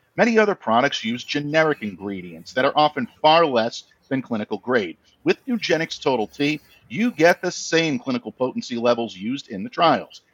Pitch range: 130-210 Hz